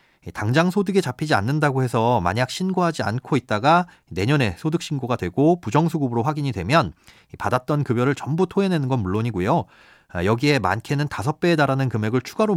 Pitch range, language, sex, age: 110-160 Hz, Korean, male, 40-59